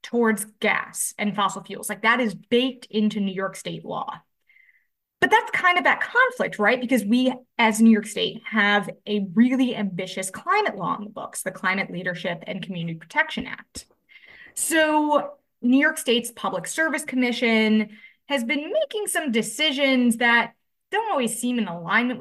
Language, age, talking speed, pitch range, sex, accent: English, 20-39, 165 wpm, 205-255 Hz, female, American